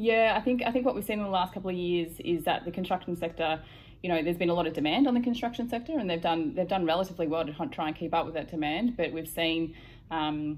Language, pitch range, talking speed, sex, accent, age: English, 150-185 Hz, 285 wpm, female, Australian, 20-39